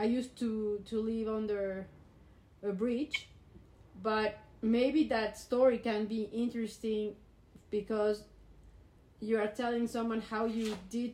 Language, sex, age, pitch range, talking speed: English, female, 30-49, 180-225 Hz, 125 wpm